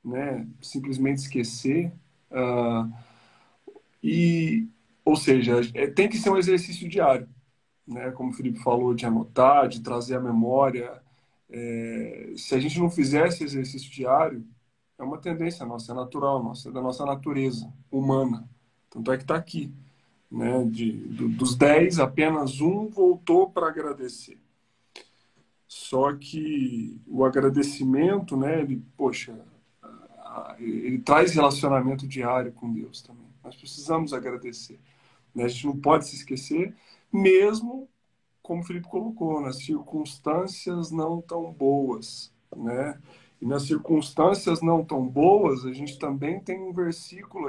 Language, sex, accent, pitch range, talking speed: Portuguese, male, Brazilian, 125-165 Hz, 125 wpm